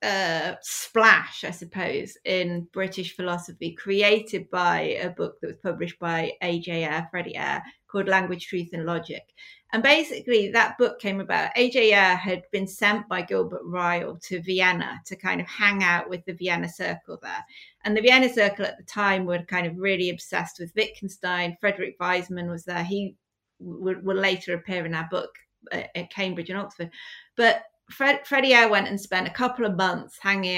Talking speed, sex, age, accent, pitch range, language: 180 wpm, female, 30-49, British, 180-225 Hz, English